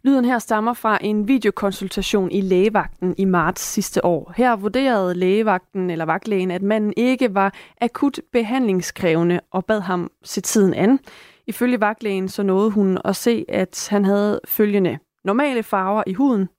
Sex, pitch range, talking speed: female, 190-235 Hz, 160 wpm